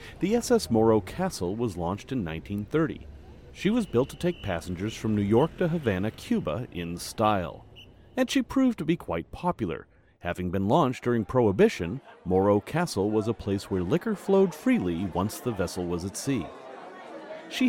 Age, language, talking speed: 40-59, English, 170 wpm